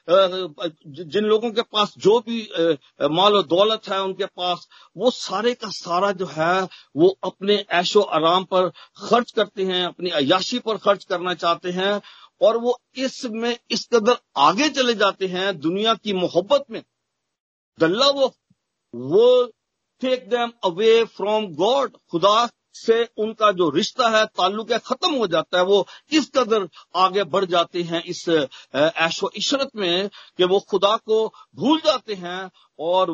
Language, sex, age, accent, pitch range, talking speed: Hindi, male, 50-69, native, 180-235 Hz, 140 wpm